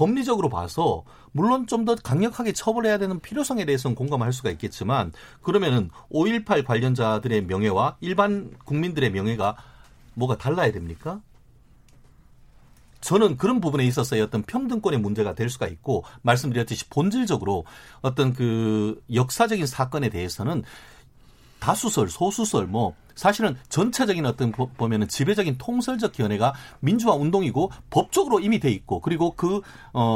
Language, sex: Korean, male